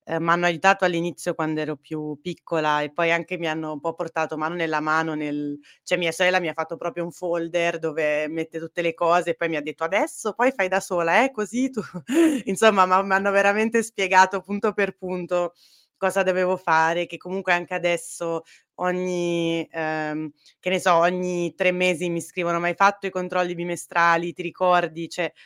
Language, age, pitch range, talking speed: Italian, 20-39, 160-180 Hz, 195 wpm